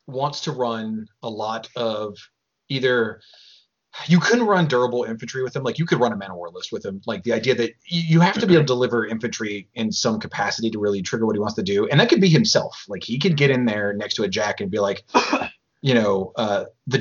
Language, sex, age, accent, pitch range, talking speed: English, male, 30-49, American, 105-140 Hz, 245 wpm